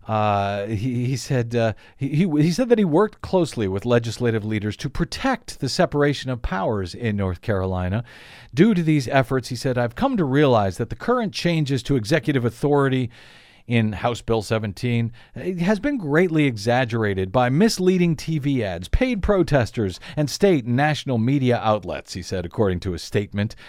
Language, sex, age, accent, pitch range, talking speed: English, male, 50-69, American, 110-140 Hz, 170 wpm